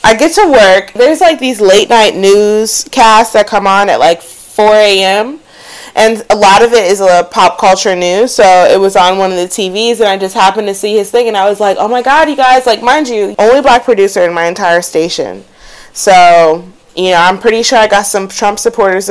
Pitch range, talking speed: 180-235 Hz, 225 wpm